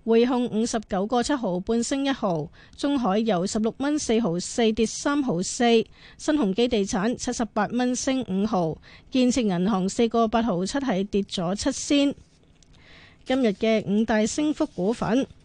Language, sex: Chinese, female